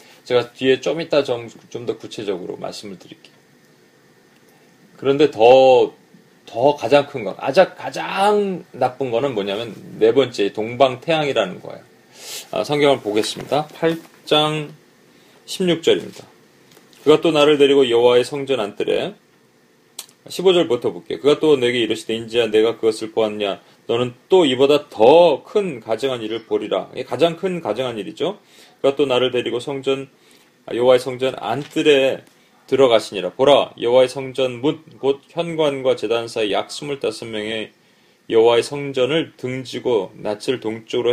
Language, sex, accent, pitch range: Korean, male, native, 120-155 Hz